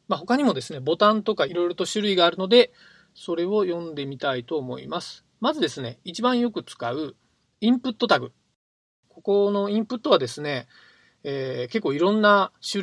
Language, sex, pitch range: Japanese, male, 140-200 Hz